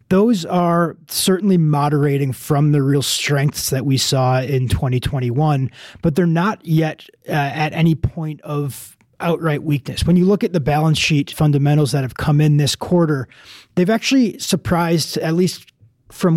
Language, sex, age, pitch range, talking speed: English, male, 30-49, 145-170 Hz, 160 wpm